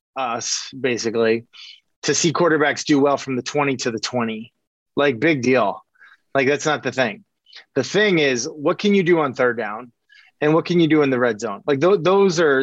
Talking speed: 205 wpm